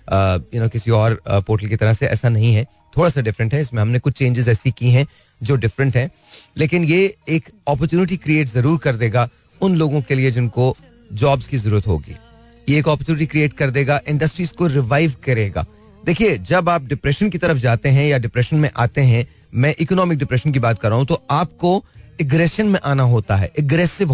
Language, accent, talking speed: Hindi, native, 205 wpm